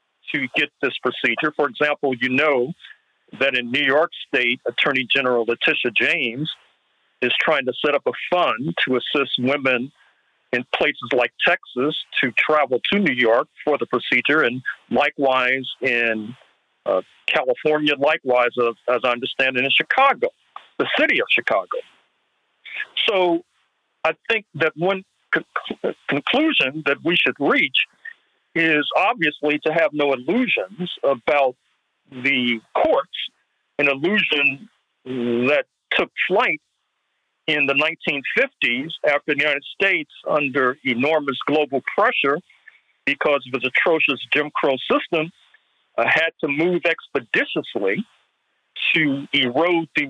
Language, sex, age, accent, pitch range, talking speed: English, male, 50-69, American, 130-165 Hz, 125 wpm